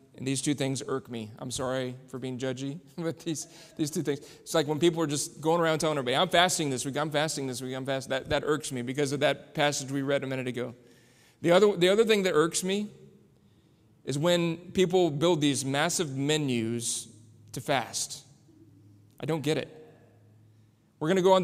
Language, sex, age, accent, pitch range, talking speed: English, male, 30-49, American, 135-180 Hz, 205 wpm